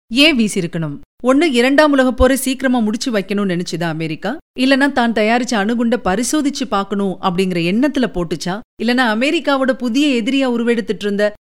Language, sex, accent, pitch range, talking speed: Tamil, female, native, 185-260 Hz, 130 wpm